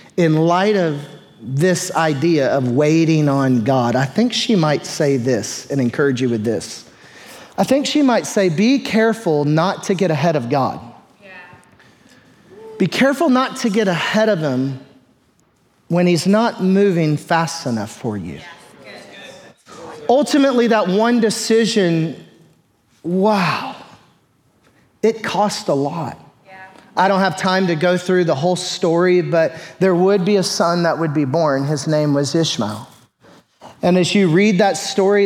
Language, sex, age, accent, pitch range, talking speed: English, male, 30-49, American, 150-195 Hz, 150 wpm